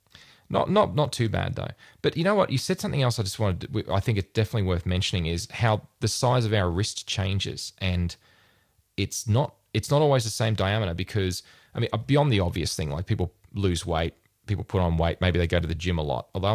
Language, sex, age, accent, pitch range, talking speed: English, male, 20-39, Australian, 90-110 Hz, 235 wpm